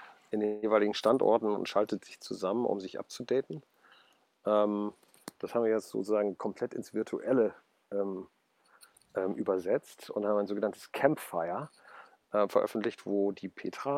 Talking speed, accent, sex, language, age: 125 wpm, German, male, German, 50-69